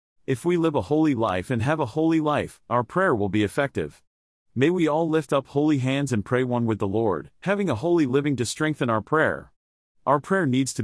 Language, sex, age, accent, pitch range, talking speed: English, male, 40-59, American, 110-150 Hz, 225 wpm